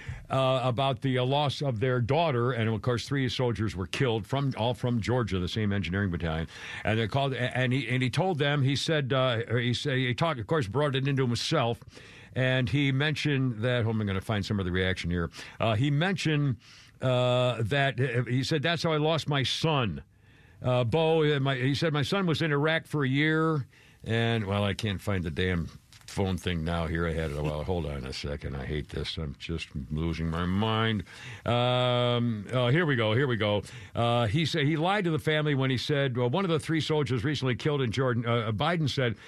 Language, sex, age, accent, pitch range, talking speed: English, male, 60-79, American, 115-150 Hz, 220 wpm